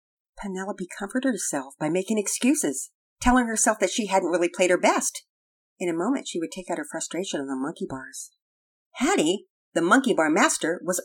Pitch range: 160-260 Hz